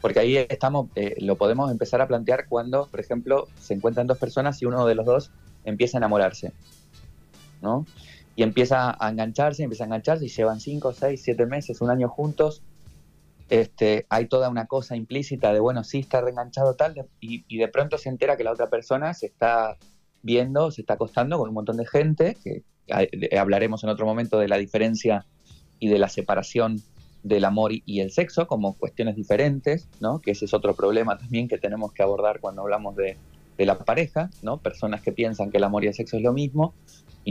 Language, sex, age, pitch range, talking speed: Spanish, male, 20-39, 105-145 Hz, 200 wpm